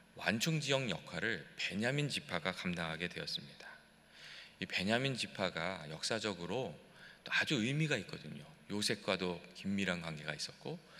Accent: native